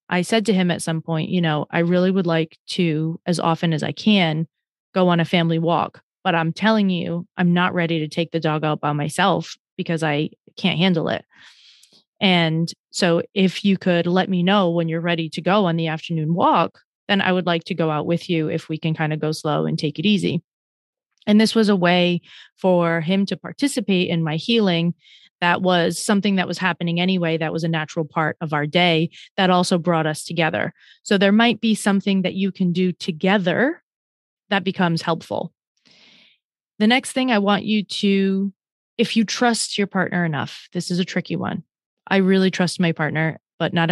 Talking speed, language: 205 wpm, English